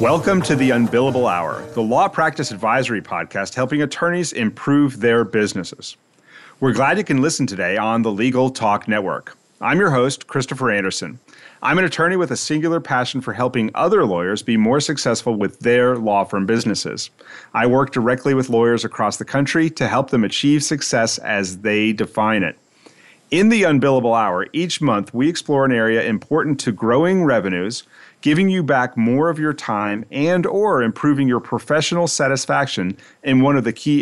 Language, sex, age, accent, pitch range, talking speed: English, male, 40-59, American, 110-150 Hz, 175 wpm